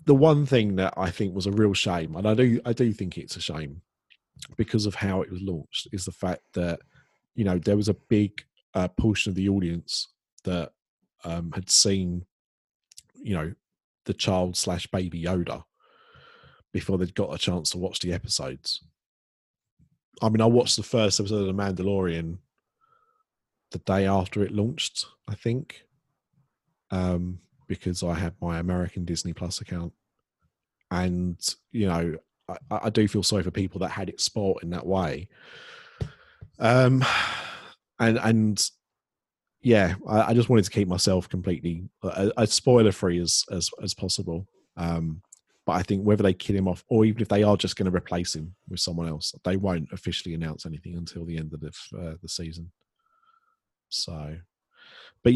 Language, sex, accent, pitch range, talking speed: English, male, British, 90-110 Hz, 175 wpm